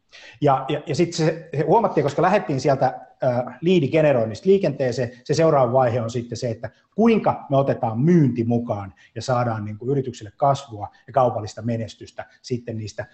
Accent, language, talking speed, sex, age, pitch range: native, Finnish, 155 wpm, male, 30-49, 120-160 Hz